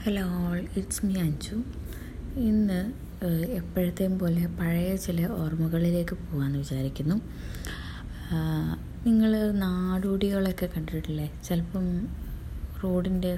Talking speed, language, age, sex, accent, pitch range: 80 wpm, Malayalam, 20-39, female, native, 155-195 Hz